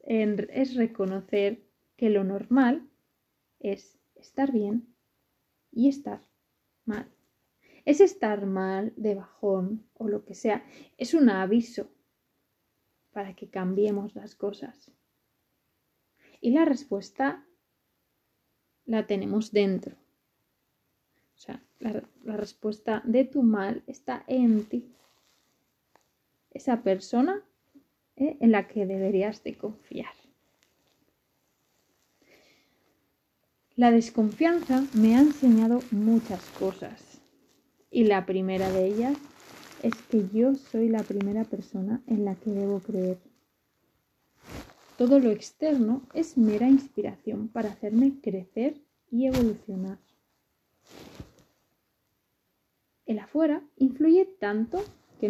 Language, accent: Spanish, Spanish